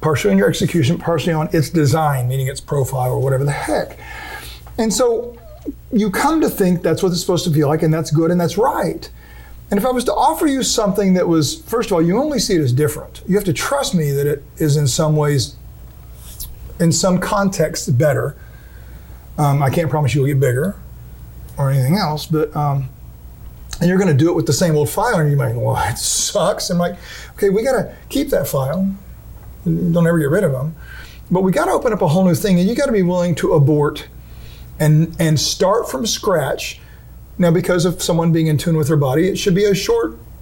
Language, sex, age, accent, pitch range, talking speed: English, male, 40-59, American, 150-195 Hz, 220 wpm